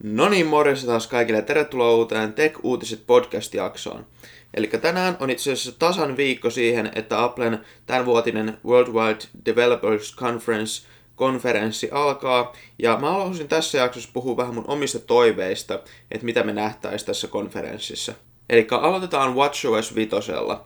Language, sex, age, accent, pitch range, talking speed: Finnish, male, 20-39, native, 110-130 Hz, 130 wpm